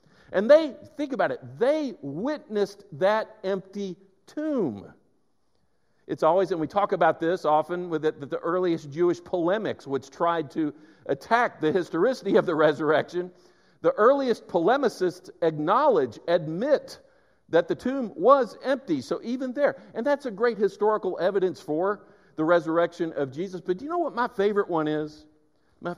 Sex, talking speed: male, 155 wpm